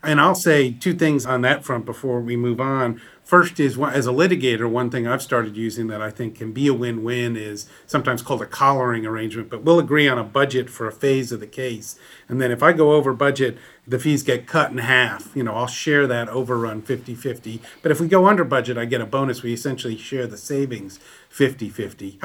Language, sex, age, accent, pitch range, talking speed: English, male, 40-59, American, 115-140 Hz, 225 wpm